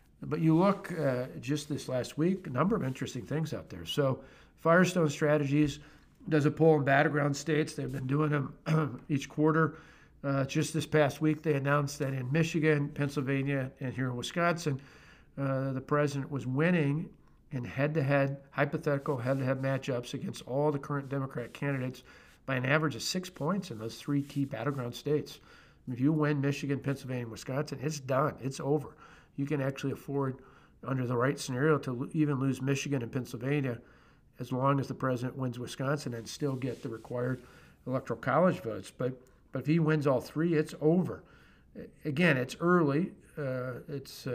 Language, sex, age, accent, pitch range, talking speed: English, male, 50-69, American, 130-150 Hz, 170 wpm